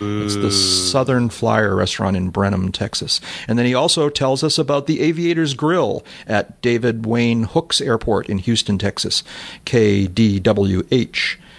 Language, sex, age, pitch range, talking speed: English, male, 40-59, 105-135 Hz, 140 wpm